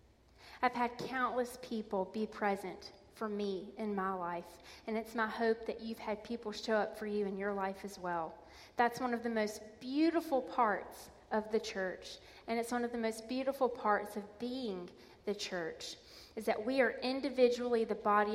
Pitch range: 200-235 Hz